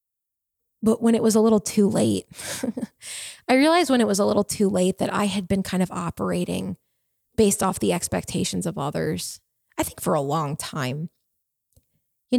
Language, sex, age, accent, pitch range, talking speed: English, female, 20-39, American, 200-245 Hz, 180 wpm